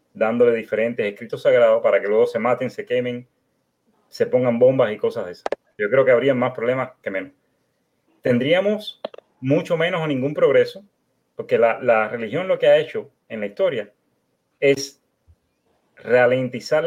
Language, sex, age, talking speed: Spanish, male, 30-49, 160 wpm